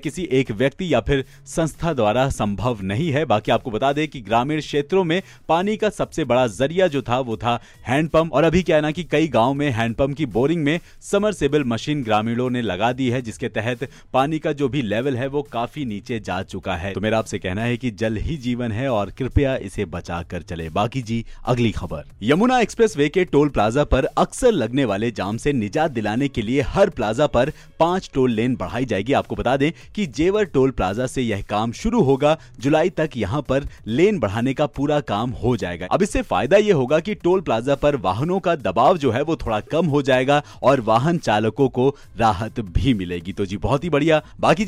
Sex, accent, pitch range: male, native, 110-155 Hz